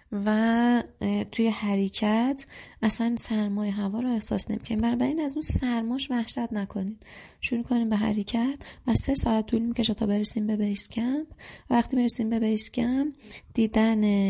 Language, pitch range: Persian, 195-235 Hz